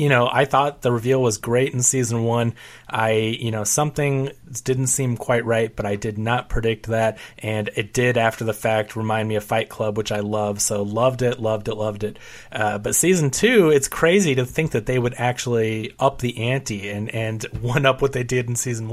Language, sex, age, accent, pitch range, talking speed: English, male, 30-49, American, 110-125 Hz, 220 wpm